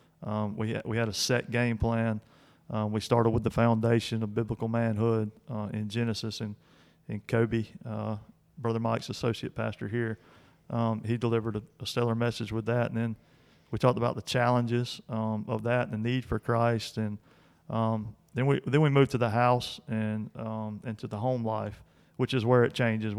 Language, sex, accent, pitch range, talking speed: English, male, American, 110-120 Hz, 195 wpm